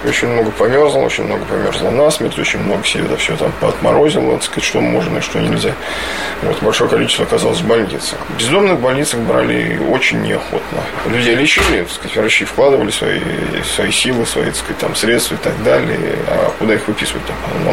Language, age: Russian, 20-39